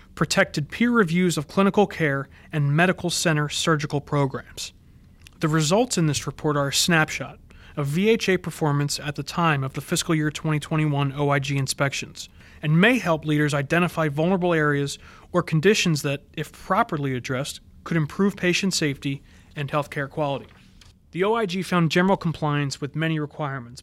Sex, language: male, English